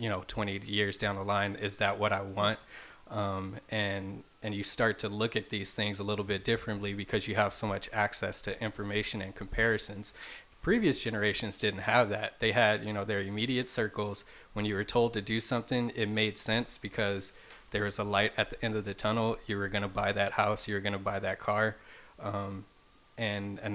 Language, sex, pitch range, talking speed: English, male, 100-110 Hz, 215 wpm